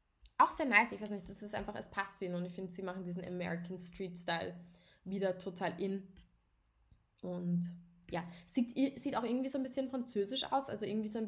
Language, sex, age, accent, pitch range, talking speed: German, female, 10-29, German, 190-220 Hz, 215 wpm